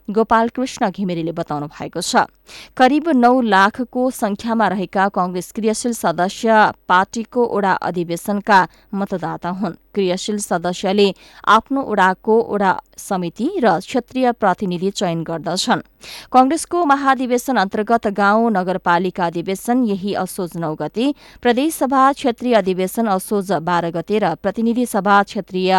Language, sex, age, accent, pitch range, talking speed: English, female, 20-39, Indian, 175-230 Hz, 100 wpm